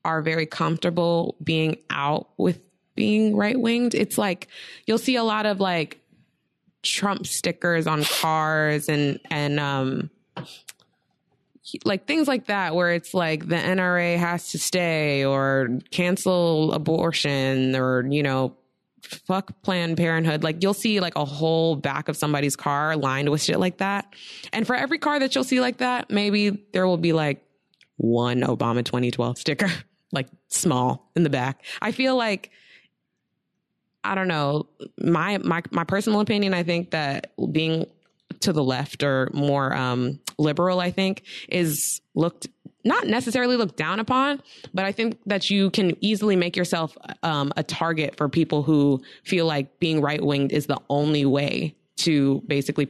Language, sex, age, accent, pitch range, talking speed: English, female, 20-39, American, 145-195 Hz, 155 wpm